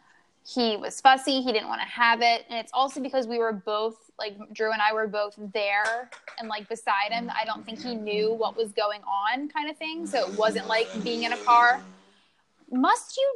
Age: 10-29